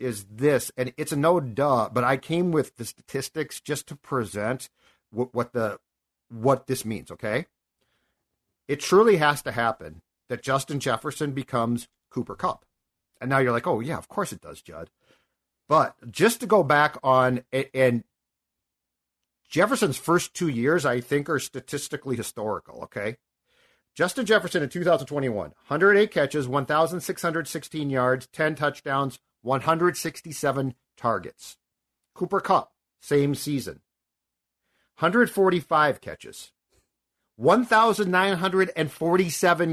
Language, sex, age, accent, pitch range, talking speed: English, male, 50-69, American, 130-185 Hz, 120 wpm